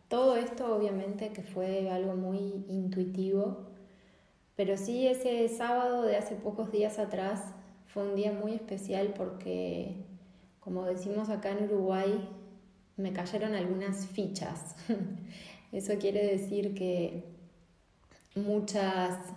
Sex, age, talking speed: female, 20-39, 115 wpm